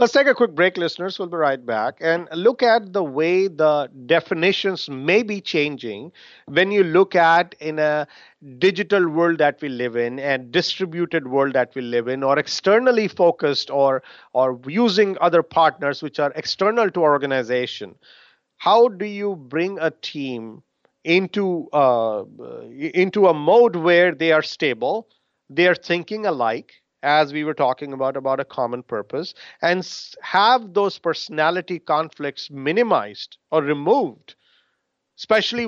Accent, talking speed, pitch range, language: Indian, 150 wpm, 145-195 Hz, English